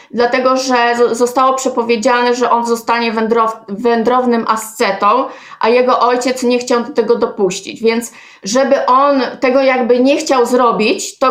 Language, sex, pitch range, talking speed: Polish, female, 230-265 Hz, 145 wpm